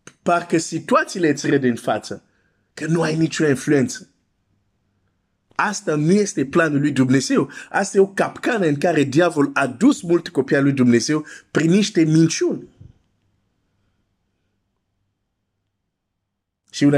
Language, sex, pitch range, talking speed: Romanian, male, 100-145 Hz, 105 wpm